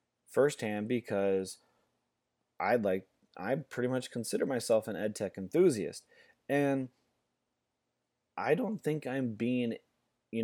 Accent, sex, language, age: American, male, English, 30-49